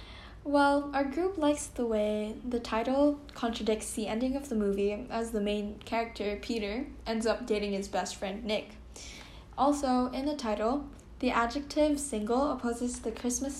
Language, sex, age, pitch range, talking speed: English, female, 10-29, 215-270 Hz, 160 wpm